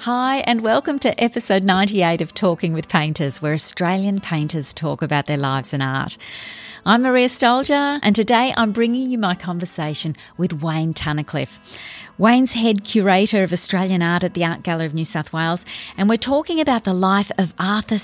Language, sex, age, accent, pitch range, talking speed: English, female, 40-59, Australian, 160-215 Hz, 180 wpm